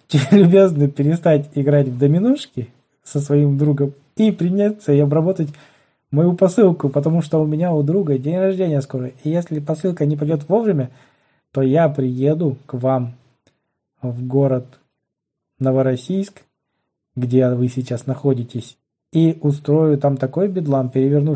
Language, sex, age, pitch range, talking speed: Russian, male, 20-39, 130-155 Hz, 130 wpm